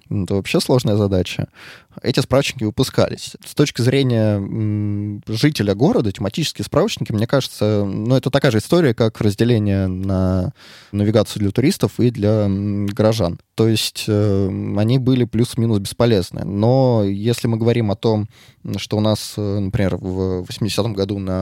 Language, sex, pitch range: Russian, male, 95-120 Hz